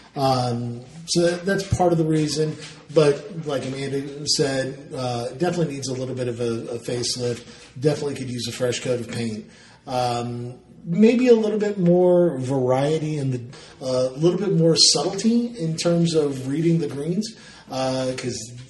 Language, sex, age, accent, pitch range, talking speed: English, male, 40-59, American, 125-160 Hz, 160 wpm